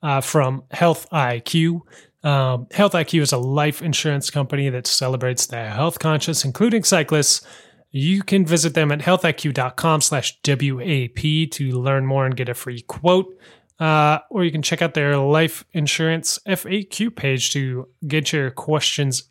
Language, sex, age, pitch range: English, male, 20-39, 130-160 Hz